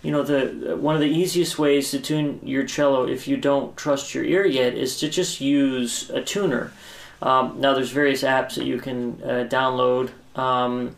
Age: 30-49